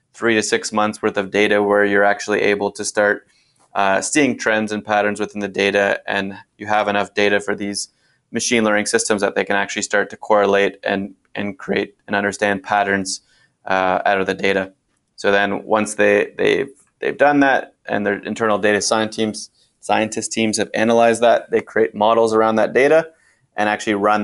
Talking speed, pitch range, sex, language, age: 190 wpm, 100-110 Hz, male, English, 20-39